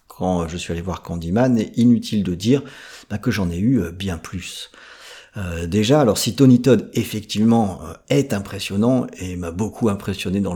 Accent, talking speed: French, 175 wpm